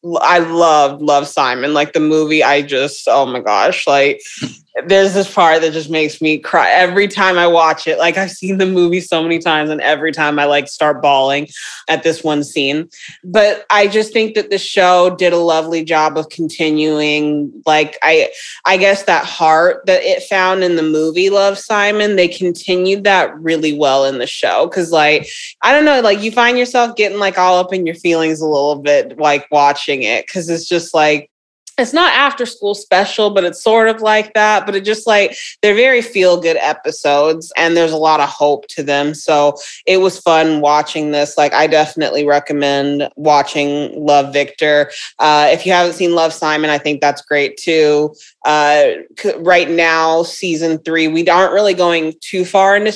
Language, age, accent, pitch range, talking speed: English, 20-39, American, 150-195 Hz, 195 wpm